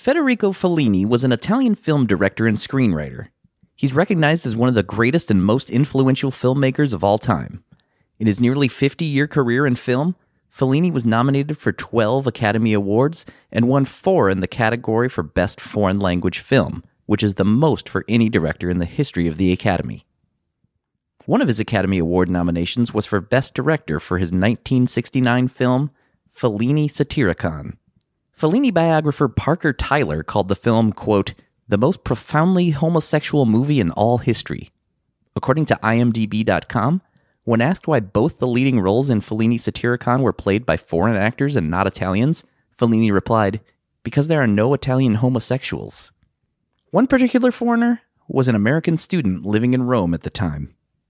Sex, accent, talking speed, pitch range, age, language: male, American, 160 wpm, 105-140 Hz, 30-49, English